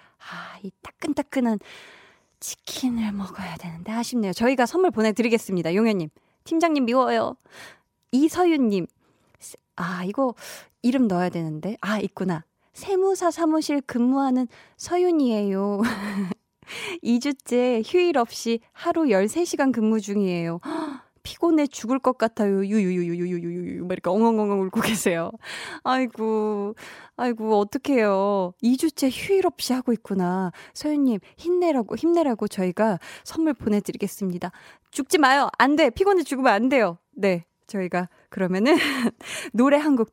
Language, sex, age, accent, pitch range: Korean, female, 20-39, native, 190-275 Hz